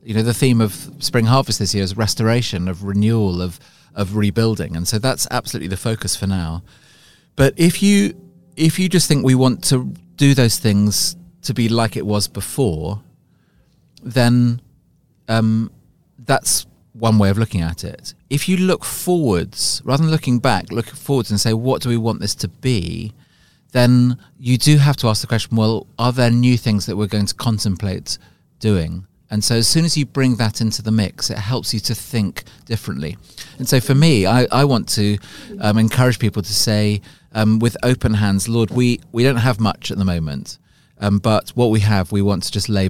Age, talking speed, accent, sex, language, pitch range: 30-49, 200 wpm, British, male, English, 100-130 Hz